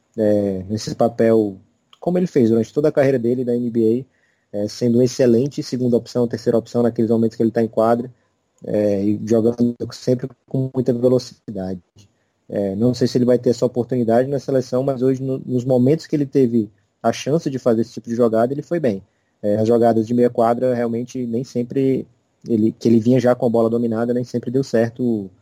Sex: male